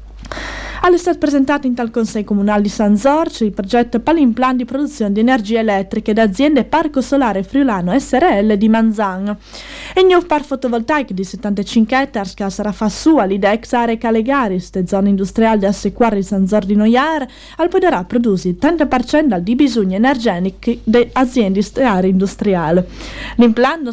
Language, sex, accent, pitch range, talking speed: Italian, female, native, 210-275 Hz, 165 wpm